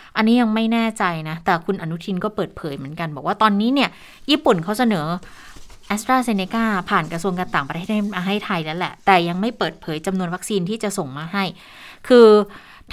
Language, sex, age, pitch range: Thai, female, 20-39, 175-215 Hz